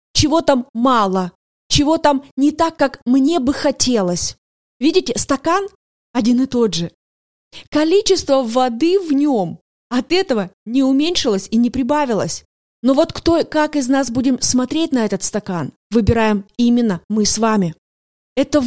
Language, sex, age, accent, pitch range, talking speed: Russian, female, 20-39, native, 235-305 Hz, 145 wpm